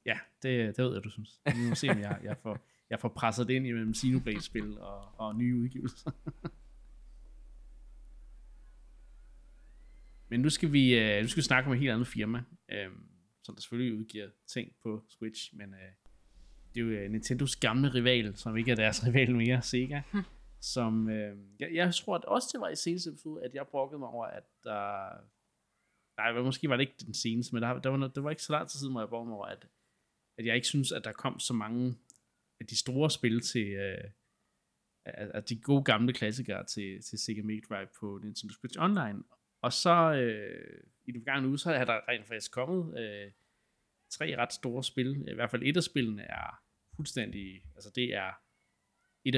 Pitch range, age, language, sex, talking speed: 110-130 Hz, 20-39, Danish, male, 190 wpm